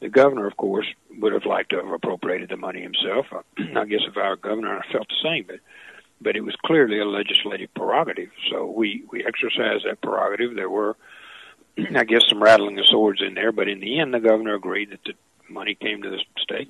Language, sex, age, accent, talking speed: English, male, 60-79, American, 220 wpm